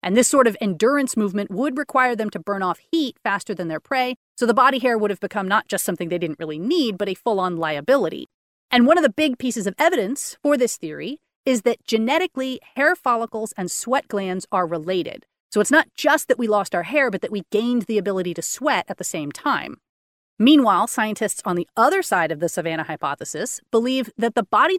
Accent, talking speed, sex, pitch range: American, 220 wpm, female, 190-255 Hz